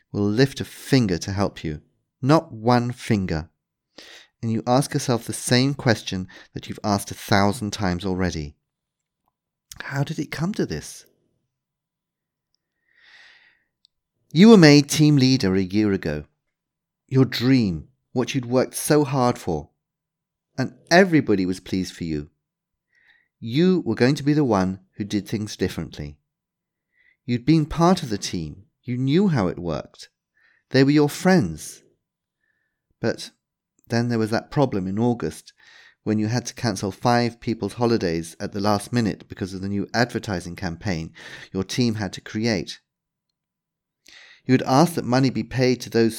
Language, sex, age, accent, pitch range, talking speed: English, male, 40-59, British, 100-135 Hz, 155 wpm